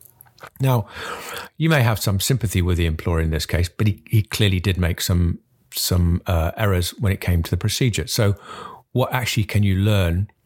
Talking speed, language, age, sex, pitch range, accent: 195 wpm, English, 50-69, male, 90-115 Hz, British